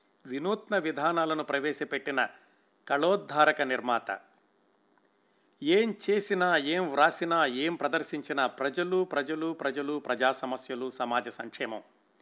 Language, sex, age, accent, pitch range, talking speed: Telugu, male, 50-69, native, 130-190 Hz, 90 wpm